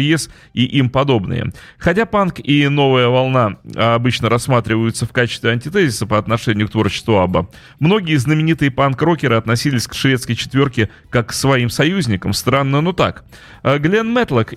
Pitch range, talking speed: 115-150 Hz, 145 wpm